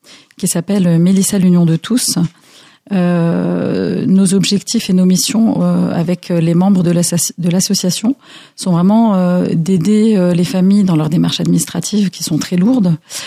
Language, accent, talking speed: French, French, 165 wpm